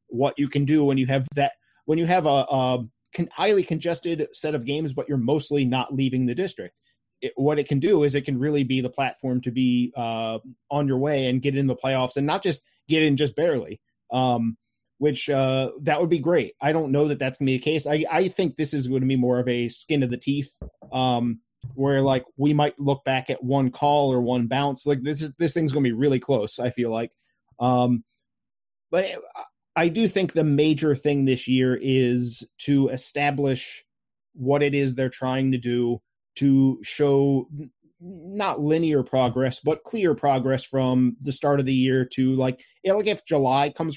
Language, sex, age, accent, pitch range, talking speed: English, male, 30-49, American, 130-150 Hz, 210 wpm